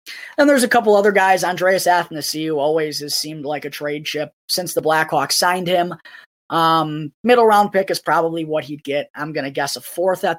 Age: 20-39